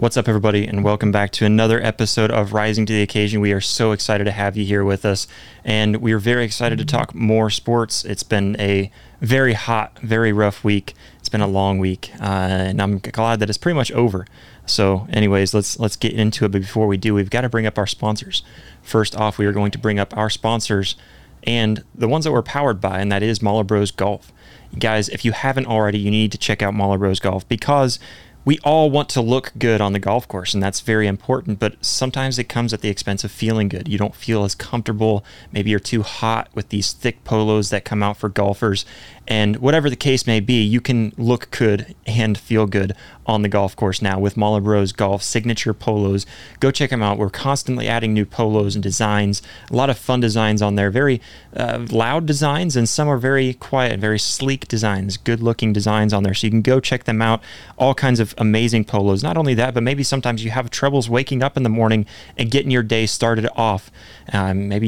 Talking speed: 230 wpm